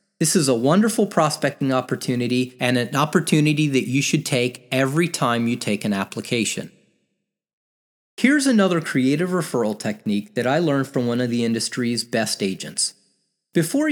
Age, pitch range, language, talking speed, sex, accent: 30-49, 120-185 Hz, English, 150 wpm, male, American